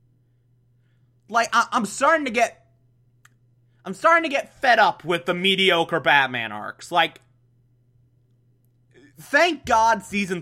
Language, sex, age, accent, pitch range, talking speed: English, male, 20-39, American, 125-195 Hz, 115 wpm